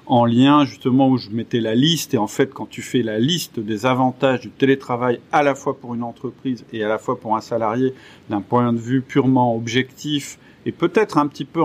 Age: 40-59